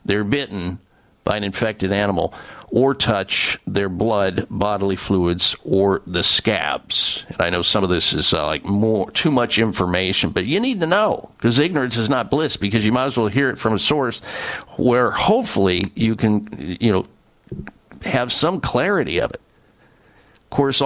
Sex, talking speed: male, 175 wpm